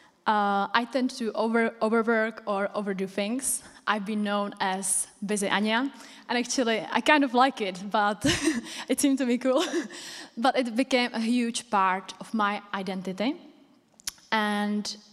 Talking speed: 150 wpm